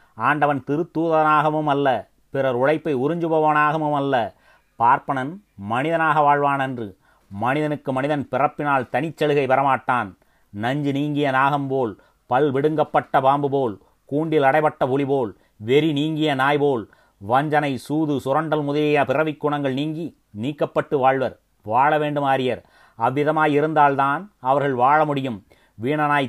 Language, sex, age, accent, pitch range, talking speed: Tamil, male, 30-49, native, 130-150 Hz, 100 wpm